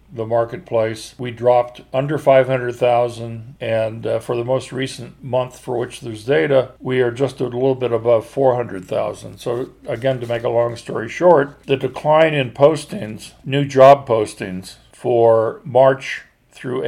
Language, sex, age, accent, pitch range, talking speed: English, male, 50-69, American, 115-140 Hz, 165 wpm